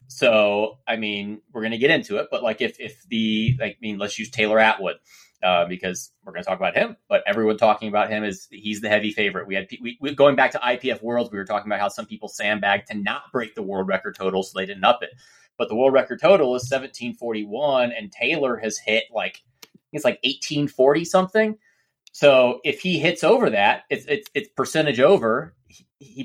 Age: 30-49